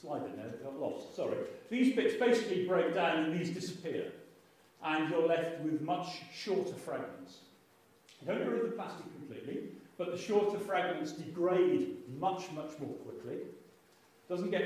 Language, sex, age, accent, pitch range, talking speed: English, male, 40-59, British, 130-190 Hz, 165 wpm